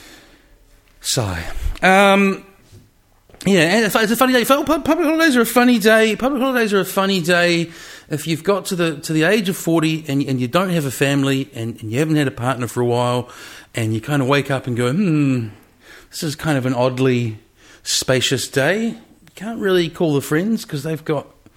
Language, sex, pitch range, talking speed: English, male, 135-200 Hz, 205 wpm